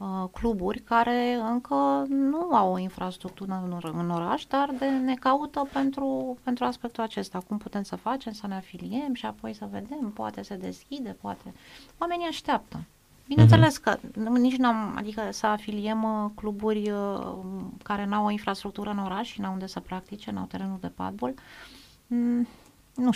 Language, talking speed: Romanian, 150 wpm